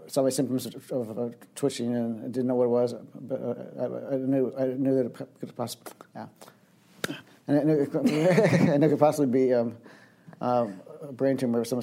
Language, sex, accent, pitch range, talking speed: English, male, American, 120-135 Hz, 210 wpm